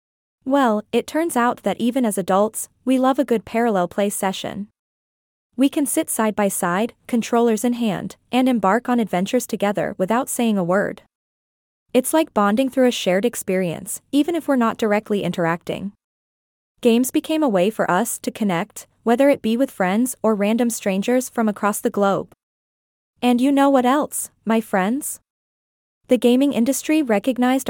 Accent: American